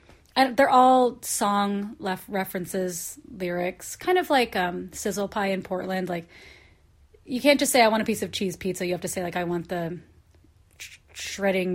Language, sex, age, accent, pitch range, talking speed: English, female, 30-49, American, 185-245 Hz, 190 wpm